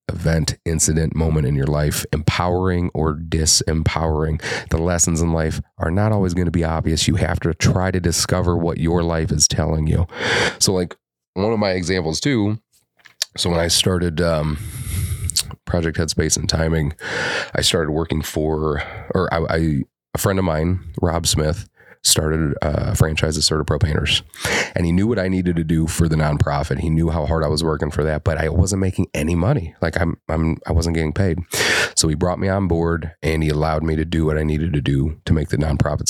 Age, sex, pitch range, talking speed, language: 30-49, male, 80-90 Hz, 200 wpm, English